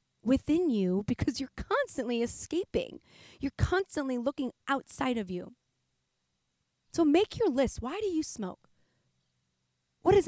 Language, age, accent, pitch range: English, 20-39, American, 210-285 Hz